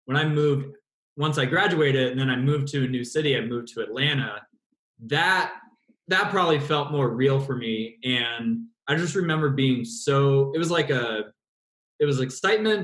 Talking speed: 180 wpm